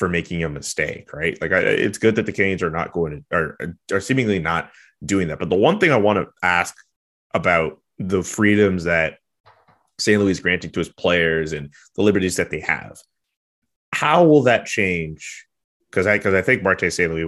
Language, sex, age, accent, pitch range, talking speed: English, male, 30-49, American, 85-110 Hz, 200 wpm